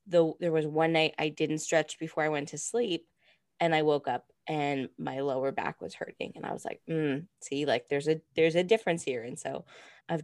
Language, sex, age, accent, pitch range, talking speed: English, female, 20-39, American, 145-170 Hz, 225 wpm